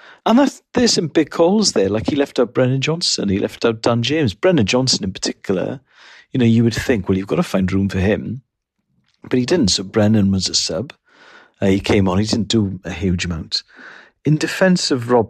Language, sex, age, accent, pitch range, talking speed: English, male, 50-69, British, 95-135 Hz, 220 wpm